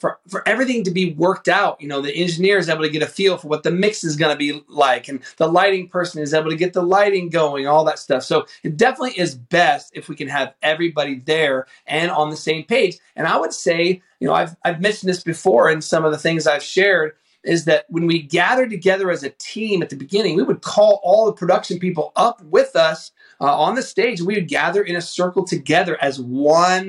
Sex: male